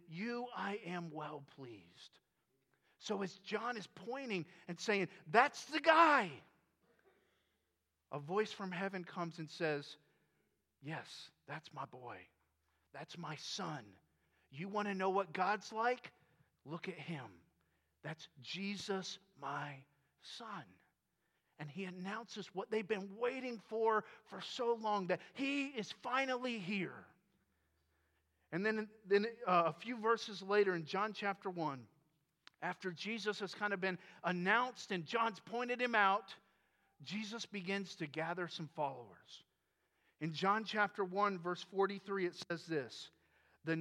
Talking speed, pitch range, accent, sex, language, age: 135 wpm, 160-210 Hz, American, male, English, 40-59